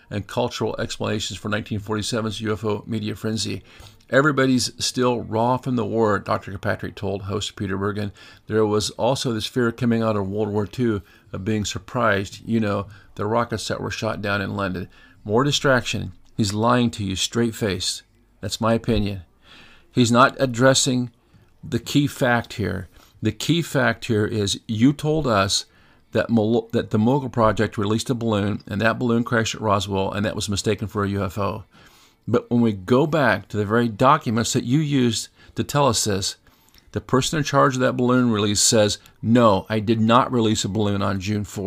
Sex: male